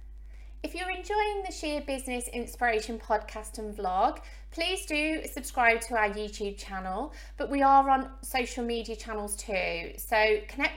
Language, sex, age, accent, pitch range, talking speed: English, female, 30-49, British, 205-245 Hz, 150 wpm